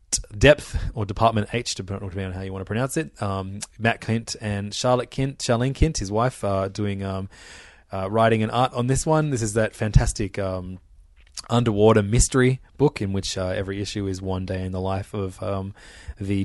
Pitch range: 95-115 Hz